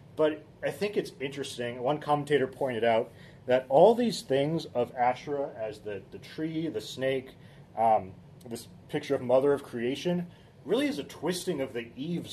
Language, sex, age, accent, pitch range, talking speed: English, male, 30-49, American, 120-150 Hz, 170 wpm